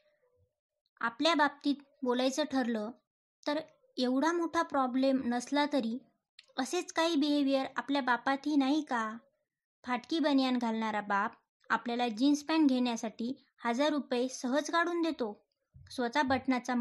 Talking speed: 110 wpm